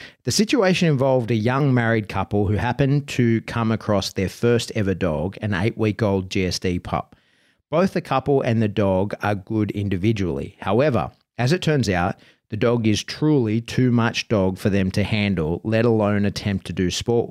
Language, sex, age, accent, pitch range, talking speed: English, male, 30-49, Australian, 100-125 Hz, 175 wpm